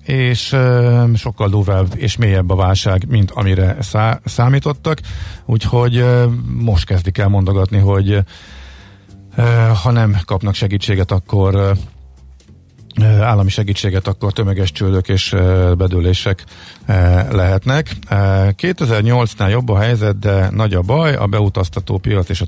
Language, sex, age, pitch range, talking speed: Hungarian, male, 50-69, 95-110 Hz, 110 wpm